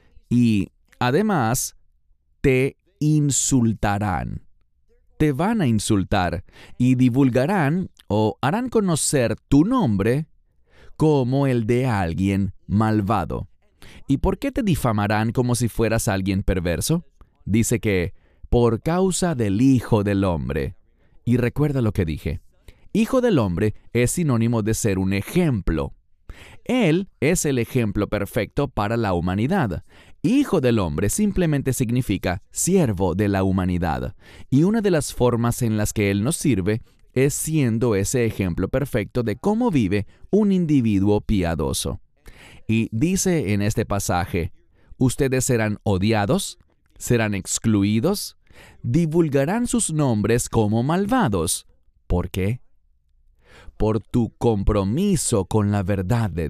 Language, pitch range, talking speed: English, 95-135 Hz, 120 wpm